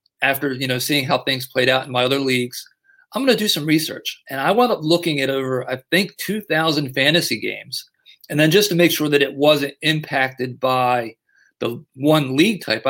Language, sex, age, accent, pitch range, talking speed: English, male, 40-59, American, 130-160 Hz, 210 wpm